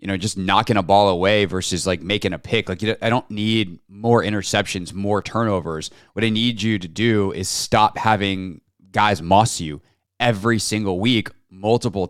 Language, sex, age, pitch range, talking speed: English, male, 20-39, 95-110 Hz, 180 wpm